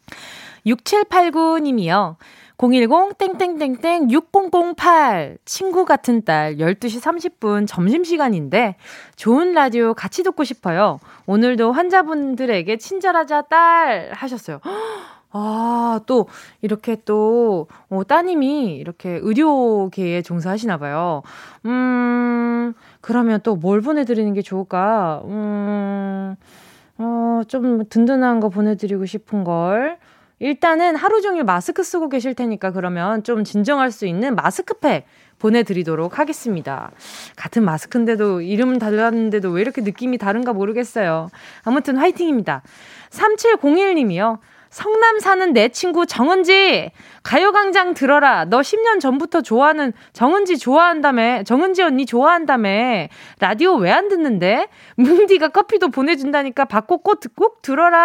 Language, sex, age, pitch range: Korean, female, 20-39, 210-330 Hz